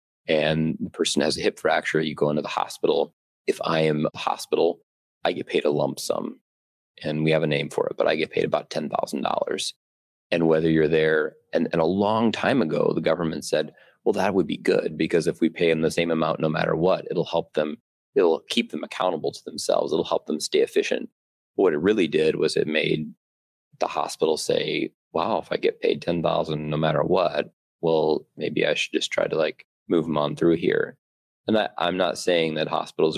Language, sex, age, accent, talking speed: English, male, 30-49, American, 220 wpm